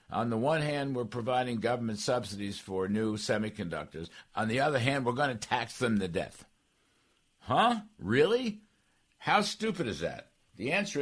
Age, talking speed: 60-79, 165 wpm